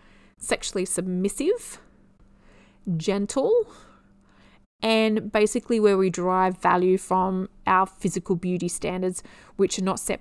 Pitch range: 180-215 Hz